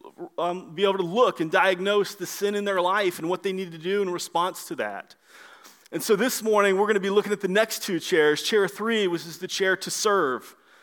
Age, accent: 30-49, American